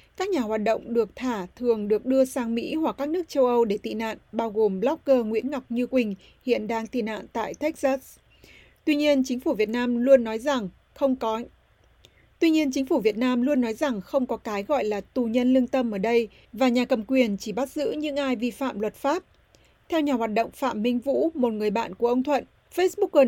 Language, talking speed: Vietnamese, 230 wpm